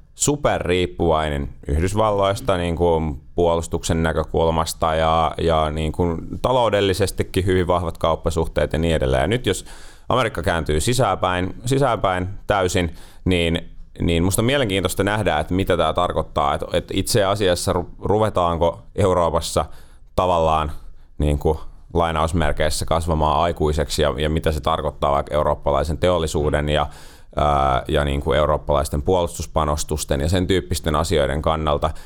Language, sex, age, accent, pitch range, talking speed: Finnish, male, 30-49, native, 75-90 Hz, 120 wpm